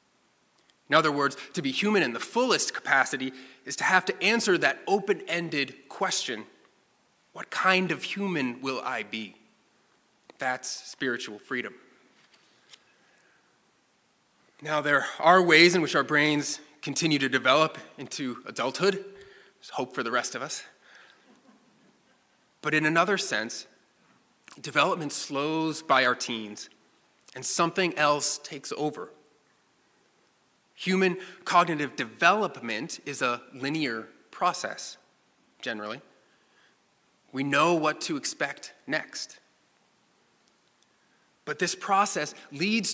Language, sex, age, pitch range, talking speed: English, male, 20-39, 130-185 Hz, 110 wpm